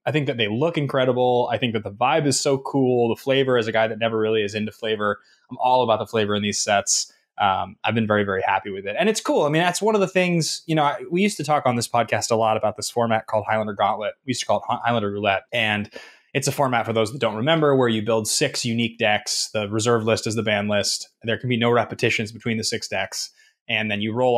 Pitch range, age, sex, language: 110-140 Hz, 20-39, male, English